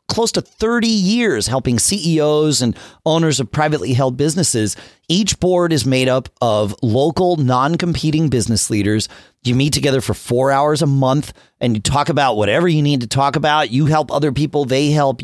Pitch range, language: 115-170 Hz, English